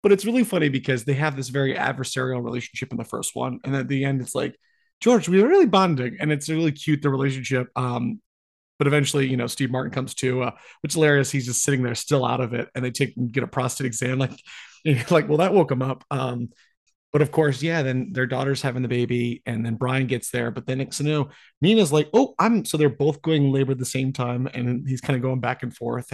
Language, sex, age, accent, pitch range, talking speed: English, male, 30-49, American, 125-145 Hz, 255 wpm